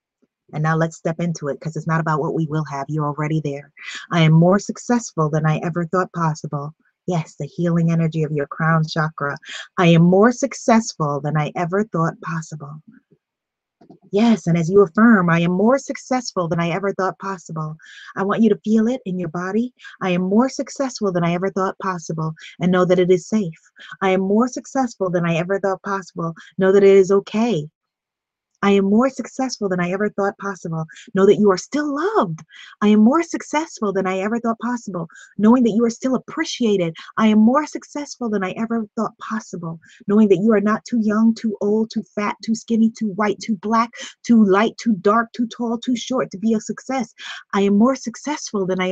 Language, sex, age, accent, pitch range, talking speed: English, female, 30-49, American, 170-225 Hz, 205 wpm